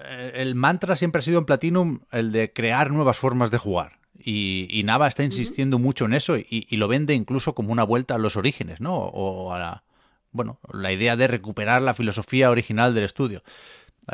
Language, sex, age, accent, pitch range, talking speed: Spanish, male, 30-49, Spanish, 100-130 Hz, 210 wpm